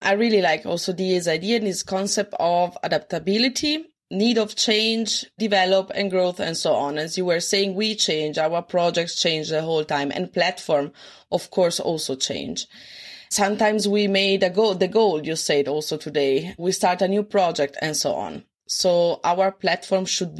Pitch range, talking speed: 160-195 Hz, 180 wpm